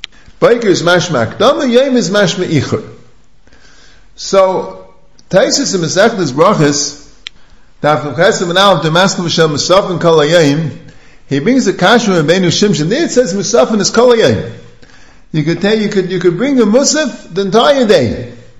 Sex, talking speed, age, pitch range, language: male, 155 wpm, 50-69, 155-220 Hz, English